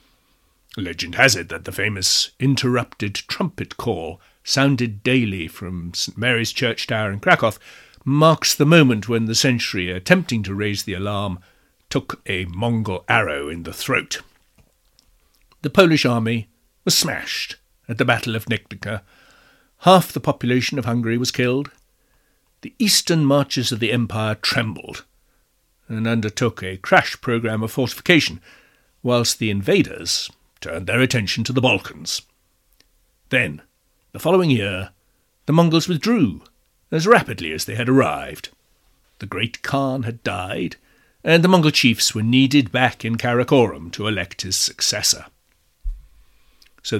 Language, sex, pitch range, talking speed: English, male, 100-140 Hz, 140 wpm